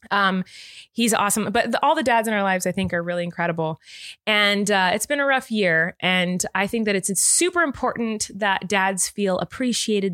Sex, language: female, English